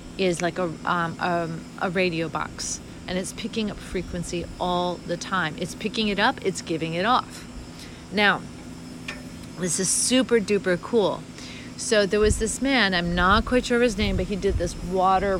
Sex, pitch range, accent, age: female, 175-225 Hz, American, 40-59